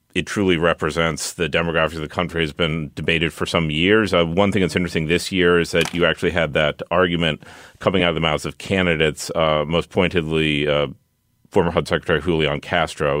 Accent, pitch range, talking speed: American, 80-90 Hz, 200 wpm